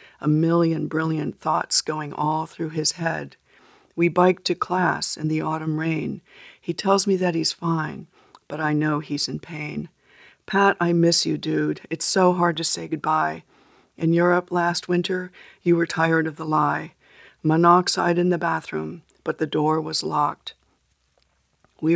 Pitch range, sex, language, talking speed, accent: 155-175 Hz, female, English, 165 wpm, American